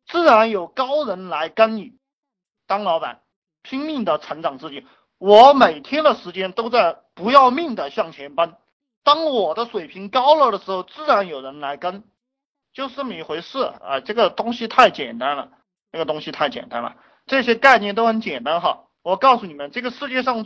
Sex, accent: male, native